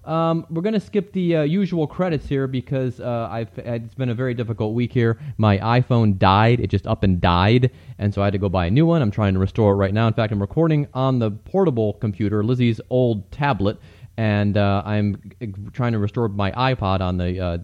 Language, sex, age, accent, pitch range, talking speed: English, male, 30-49, American, 110-150 Hz, 230 wpm